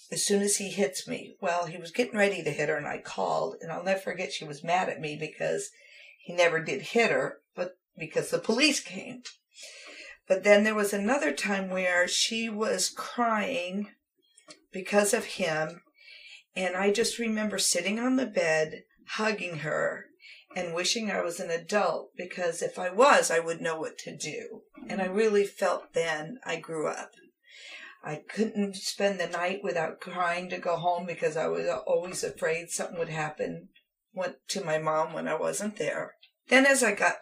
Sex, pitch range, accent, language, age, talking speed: female, 175-235 Hz, American, English, 50-69, 185 wpm